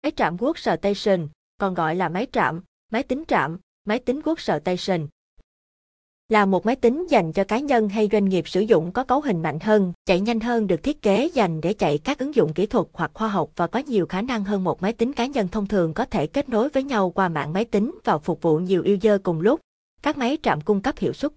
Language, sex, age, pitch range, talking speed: Vietnamese, female, 20-39, 180-240 Hz, 245 wpm